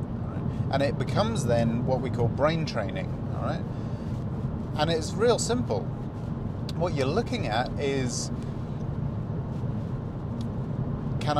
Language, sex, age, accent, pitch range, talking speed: English, male, 30-49, British, 120-140 Hz, 110 wpm